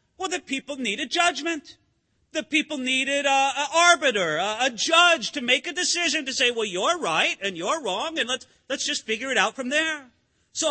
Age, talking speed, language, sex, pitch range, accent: 40-59, 195 wpm, English, male, 230-290 Hz, American